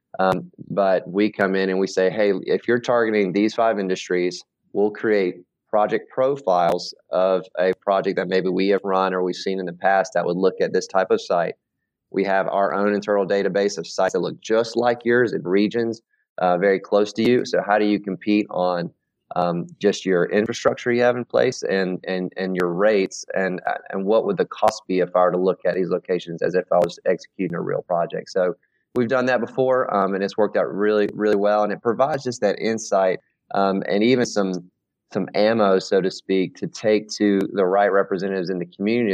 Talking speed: 215 wpm